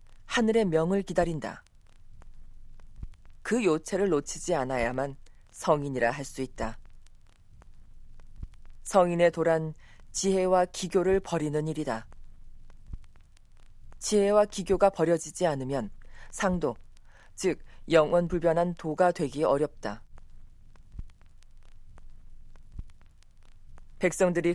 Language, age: Korean, 40-59